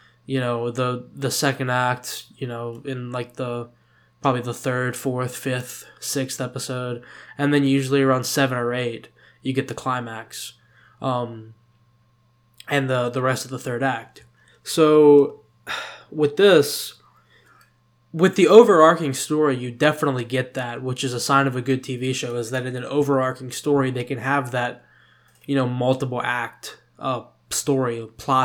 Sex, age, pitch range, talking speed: male, 10-29, 120-140 Hz, 160 wpm